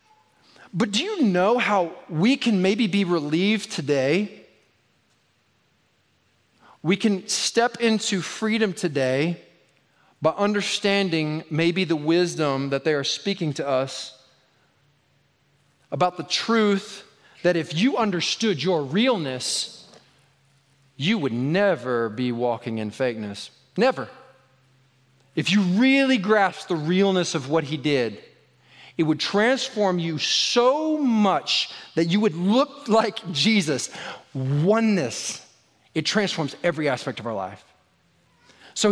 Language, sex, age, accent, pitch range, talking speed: English, male, 40-59, American, 140-210 Hz, 115 wpm